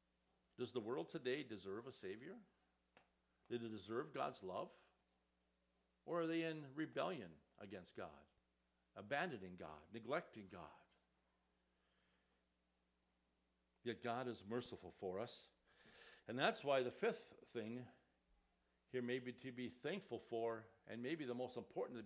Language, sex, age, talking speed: English, male, 60-79, 130 wpm